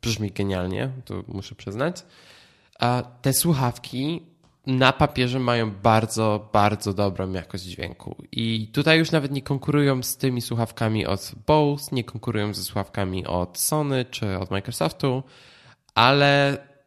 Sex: male